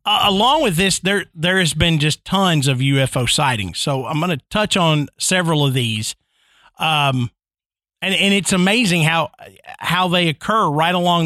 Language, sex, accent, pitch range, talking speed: English, male, American, 150-195 Hz, 175 wpm